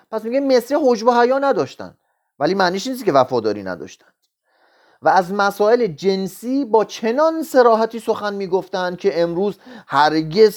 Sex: male